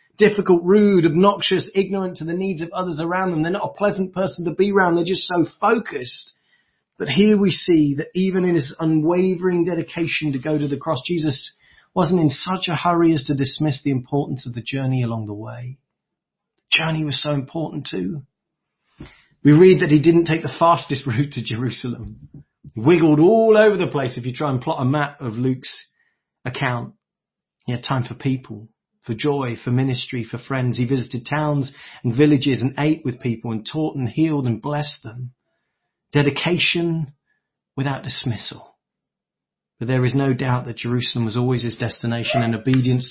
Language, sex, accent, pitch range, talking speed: English, male, British, 125-170 Hz, 180 wpm